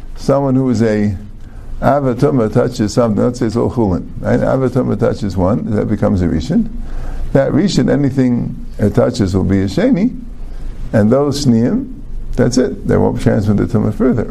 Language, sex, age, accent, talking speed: English, male, 50-69, American, 170 wpm